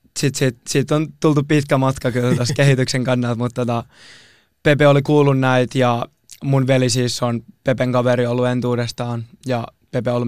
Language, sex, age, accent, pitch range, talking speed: Finnish, male, 20-39, native, 120-135 Hz, 170 wpm